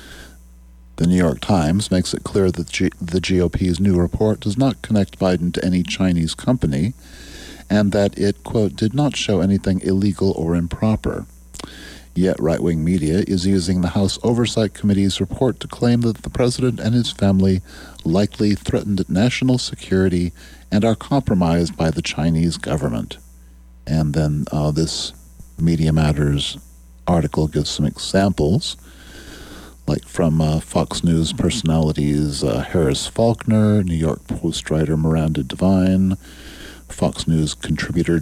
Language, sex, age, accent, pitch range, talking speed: English, male, 40-59, American, 65-100 Hz, 140 wpm